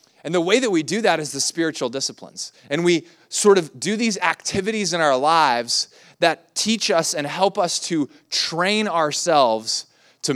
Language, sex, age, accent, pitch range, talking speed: English, male, 20-39, American, 130-175 Hz, 180 wpm